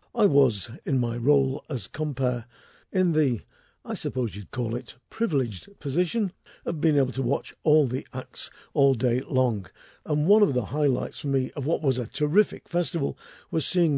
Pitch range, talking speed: 130-160 Hz, 180 wpm